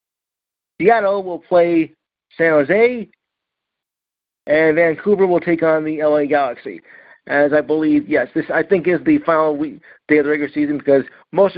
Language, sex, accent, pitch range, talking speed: English, male, American, 150-190 Hz, 160 wpm